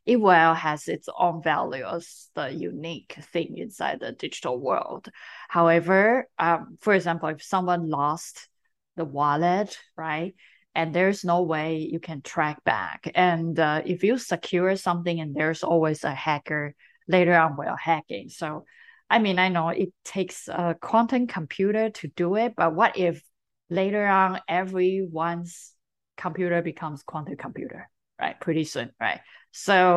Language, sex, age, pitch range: English, female, 30-49, 165-195 Hz